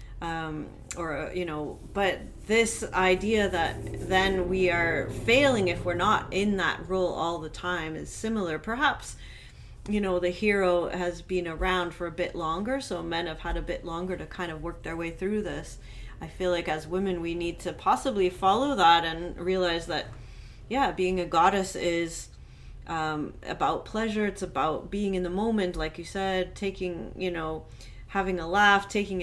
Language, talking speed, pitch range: English, 180 wpm, 165-195 Hz